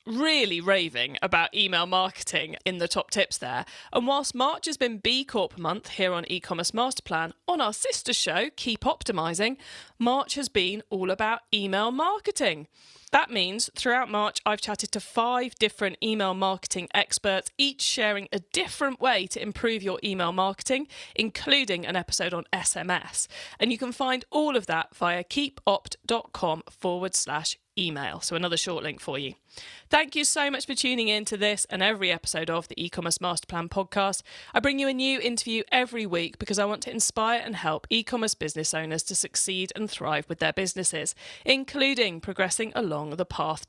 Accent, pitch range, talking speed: British, 180-250 Hz, 175 wpm